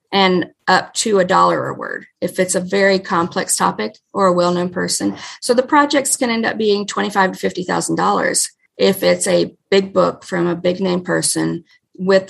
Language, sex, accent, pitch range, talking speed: English, female, American, 175-195 Hz, 190 wpm